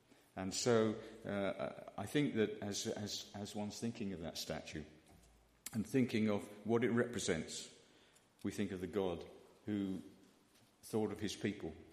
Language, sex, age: English, male, 50-69